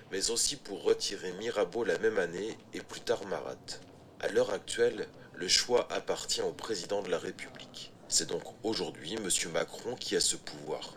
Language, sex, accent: French, male, French